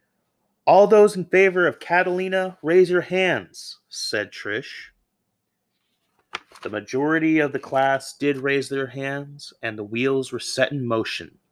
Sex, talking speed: male, 140 wpm